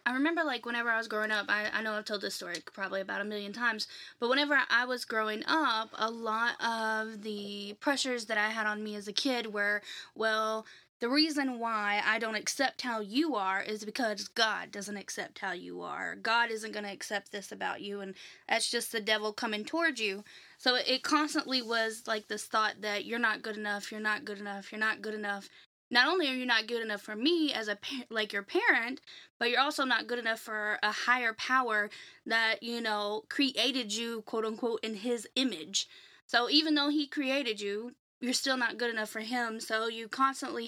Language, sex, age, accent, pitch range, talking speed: English, female, 10-29, American, 215-250 Hz, 210 wpm